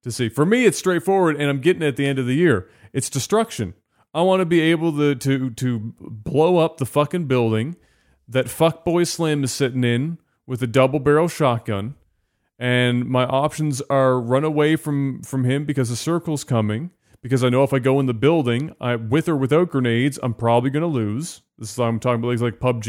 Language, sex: English, male